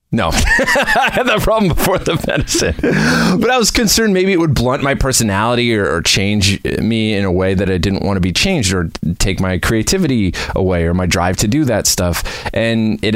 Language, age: English, 30-49